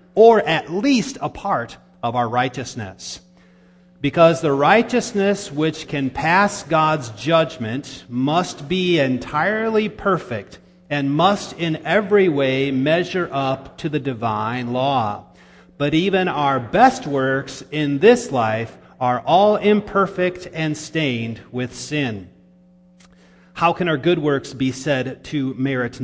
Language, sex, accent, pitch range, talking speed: English, male, American, 130-180 Hz, 125 wpm